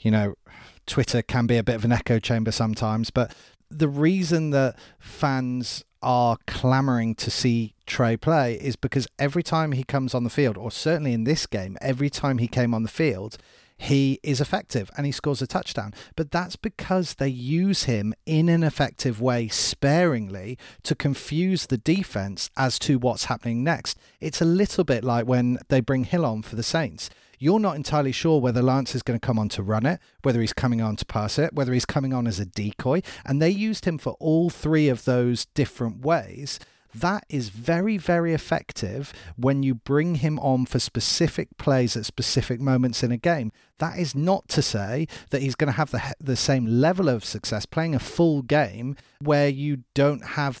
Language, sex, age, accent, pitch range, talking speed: English, male, 40-59, British, 120-150 Hz, 200 wpm